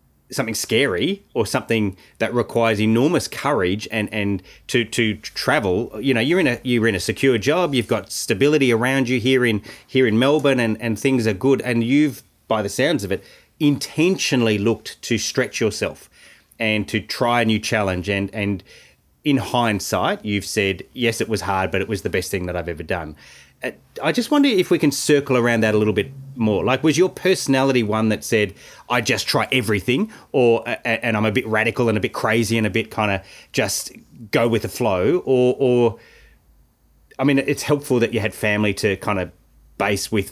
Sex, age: male, 30-49